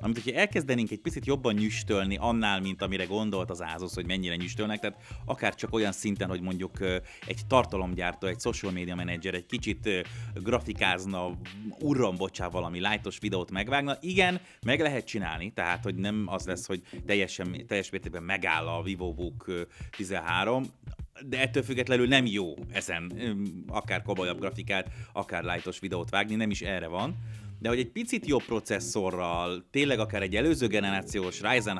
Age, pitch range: 30-49, 95-115 Hz